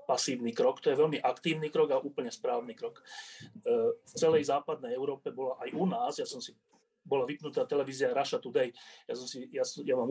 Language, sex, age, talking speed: Slovak, male, 30-49, 195 wpm